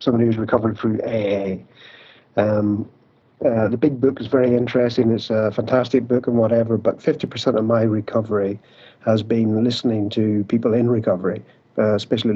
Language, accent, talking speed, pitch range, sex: English, British, 160 wpm, 110-125 Hz, male